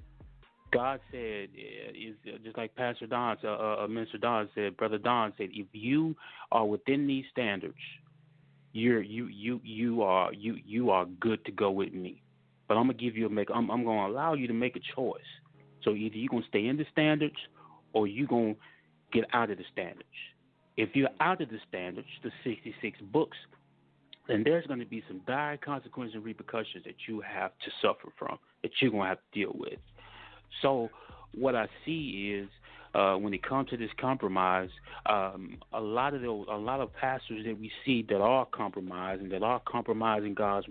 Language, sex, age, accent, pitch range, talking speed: English, male, 30-49, American, 100-120 Hz, 185 wpm